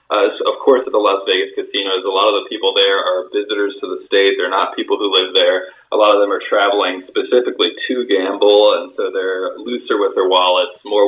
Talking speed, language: 225 wpm, English